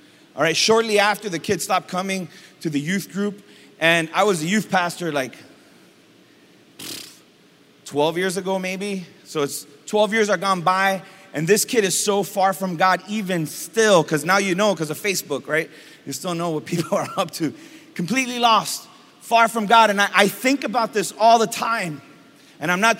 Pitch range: 180-230 Hz